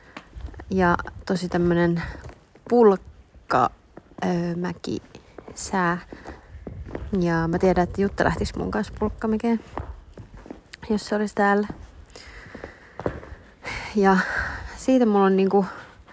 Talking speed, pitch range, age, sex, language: 80 wpm, 160-195 Hz, 30-49, female, Finnish